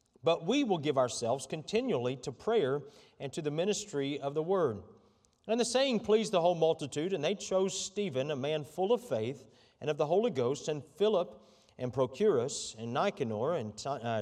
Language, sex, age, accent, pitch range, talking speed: English, male, 40-59, American, 125-165 Hz, 180 wpm